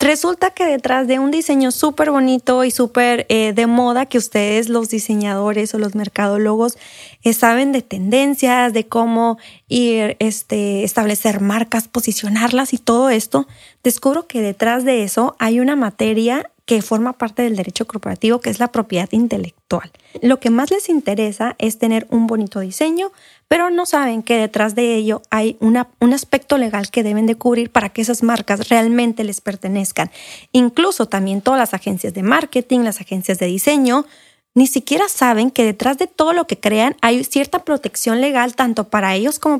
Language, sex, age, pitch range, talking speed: Spanish, female, 20-39, 220-260 Hz, 175 wpm